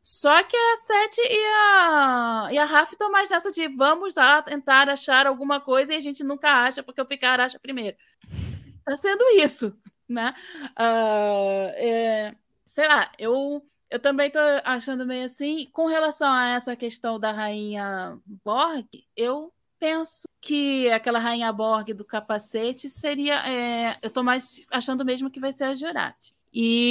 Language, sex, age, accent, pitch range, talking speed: Portuguese, female, 20-39, Brazilian, 220-270 Hz, 165 wpm